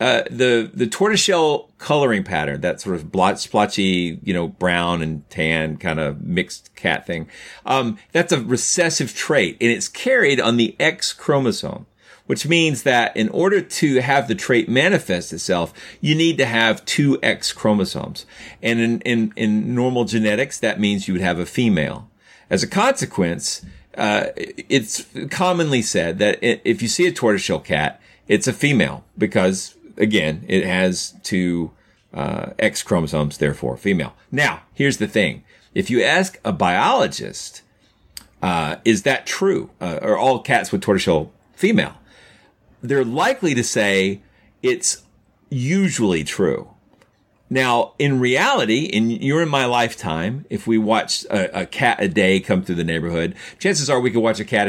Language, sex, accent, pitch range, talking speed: English, male, American, 90-135 Hz, 160 wpm